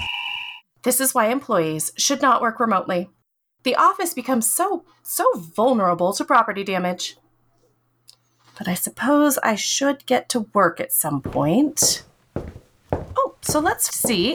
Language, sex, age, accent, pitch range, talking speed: English, female, 30-49, American, 180-280 Hz, 135 wpm